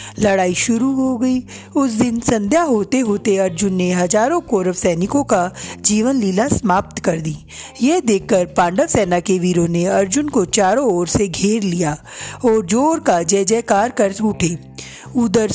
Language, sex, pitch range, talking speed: Hindi, female, 180-235 Hz, 160 wpm